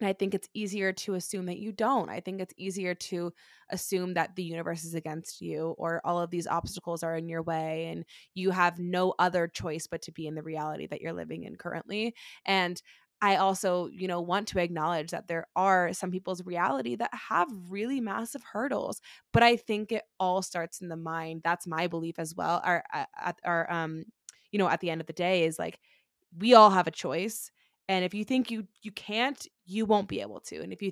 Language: English